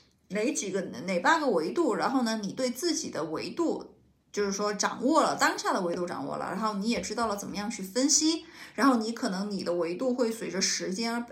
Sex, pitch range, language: female, 195-255 Hz, Chinese